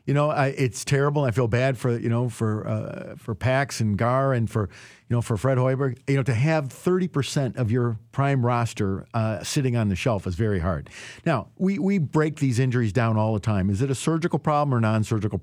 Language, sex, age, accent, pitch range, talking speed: English, male, 50-69, American, 110-145 Hz, 230 wpm